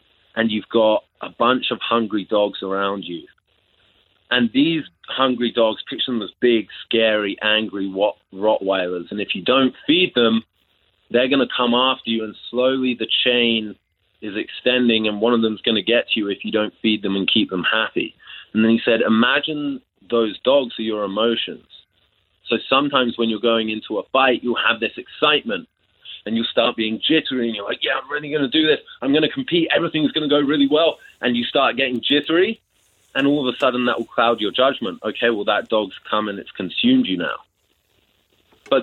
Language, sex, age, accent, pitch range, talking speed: English, male, 30-49, British, 110-140 Hz, 200 wpm